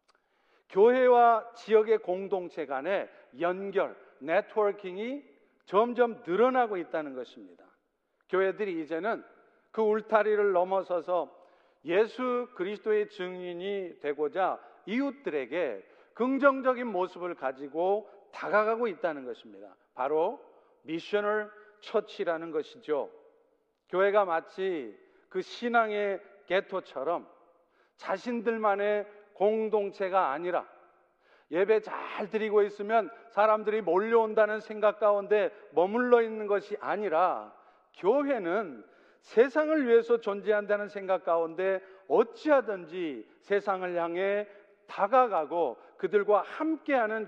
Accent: native